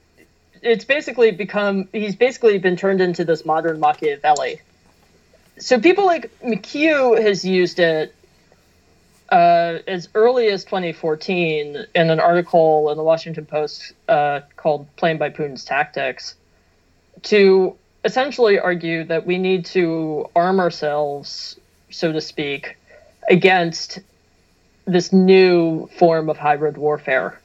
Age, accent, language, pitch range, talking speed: 30-49, American, English, 150-200 Hz, 120 wpm